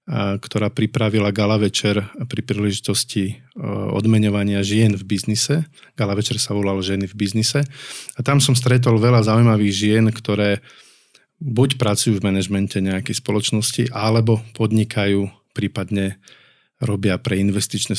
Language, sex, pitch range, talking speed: Slovak, male, 100-115 Hz, 125 wpm